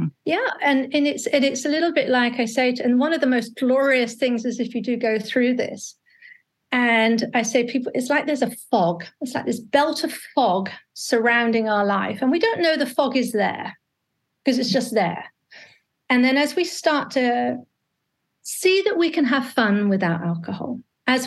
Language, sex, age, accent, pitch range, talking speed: English, female, 40-59, British, 235-295 Hz, 195 wpm